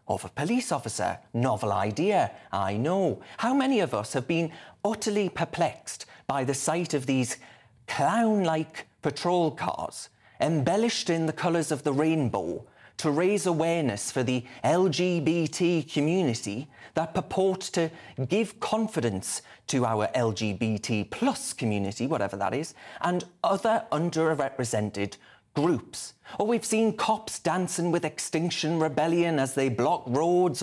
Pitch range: 125-180 Hz